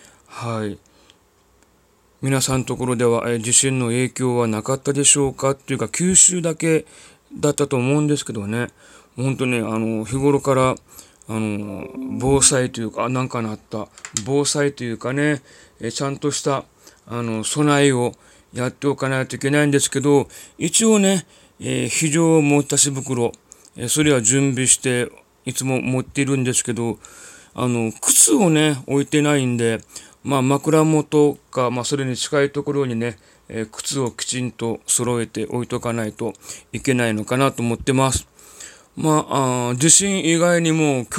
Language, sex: Japanese, male